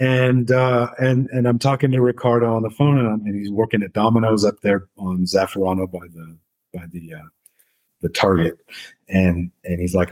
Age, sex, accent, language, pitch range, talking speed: 30-49, male, American, English, 90-120 Hz, 195 wpm